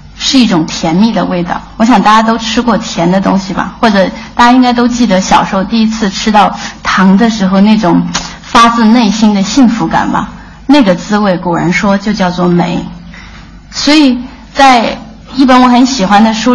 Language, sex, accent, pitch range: Chinese, female, native, 190-235 Hz